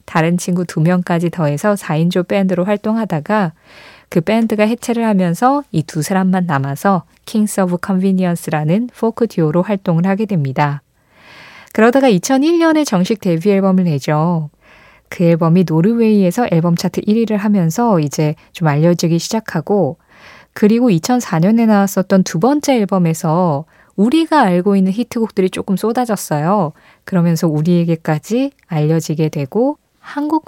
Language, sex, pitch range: Korean, female, 165-235 Hz